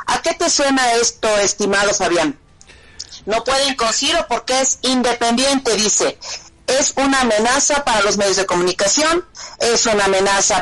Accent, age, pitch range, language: Mexican, 40-59, 200-250 Hz, Spanish